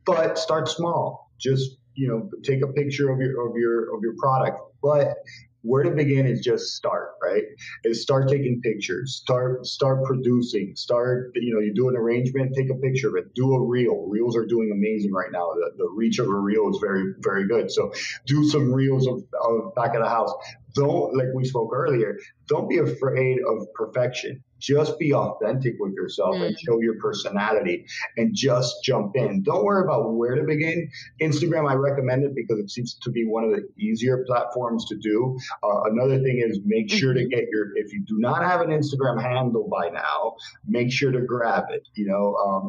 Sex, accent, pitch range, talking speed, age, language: male, American, 115-145 Hz, 200 wpm, 40-59, English